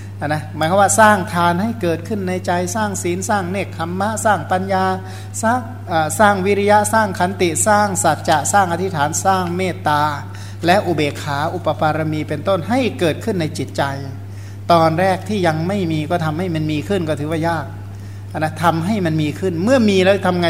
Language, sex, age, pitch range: Thai, male, 60-79, 140-175 Hz